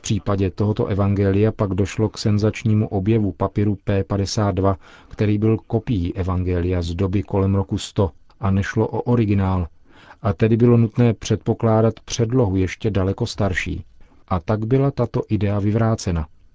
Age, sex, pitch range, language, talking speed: 40-59, male, 95-115 Hz, Czech, 140 wpm